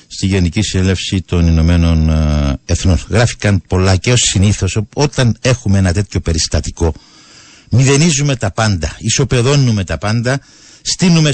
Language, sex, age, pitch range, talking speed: Greek, male, 60-79, 85-120 Hz, 120 wpm